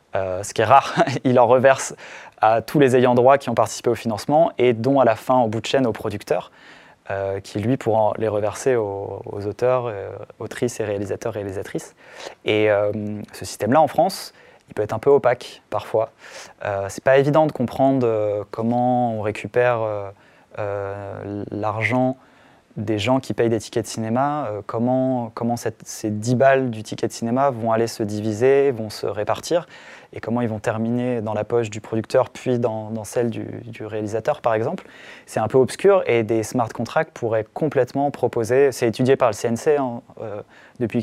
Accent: French